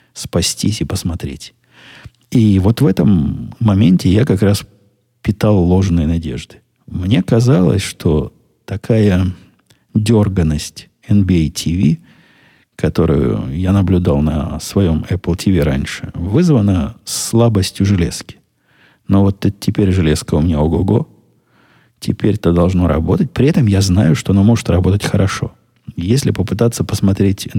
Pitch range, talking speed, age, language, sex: 90-120 Hz, 120 wpm, 50-69, Russian, male